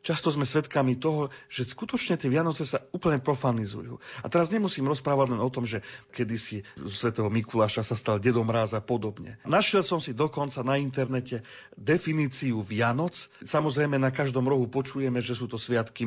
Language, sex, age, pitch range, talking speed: Slovak, male, 40-59, 120-155 Hz, 170 wpm